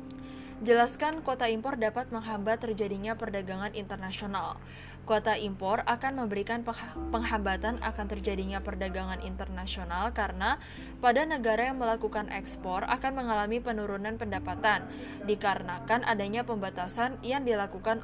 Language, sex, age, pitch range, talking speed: English, female, 20-39, 200-235 Hz, 105 wpm